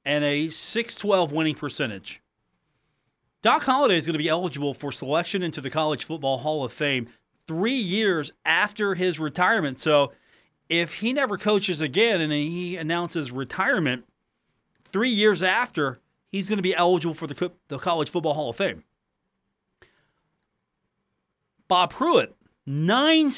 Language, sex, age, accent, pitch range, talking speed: English, male, 40-59, American, 145-195 Hz, 140 wpm